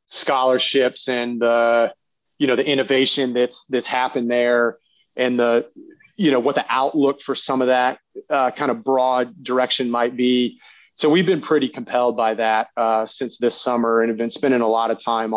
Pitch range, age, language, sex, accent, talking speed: 120-135 Hz, 30-49, English, male, American, 190 wpm